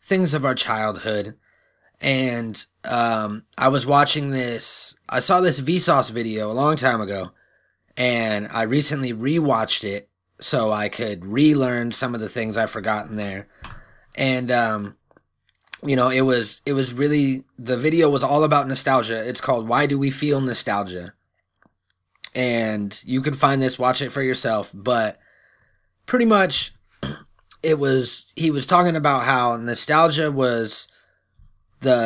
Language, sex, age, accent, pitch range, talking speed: English, male, 20-39, American, 110-140 Hz, 150 wpm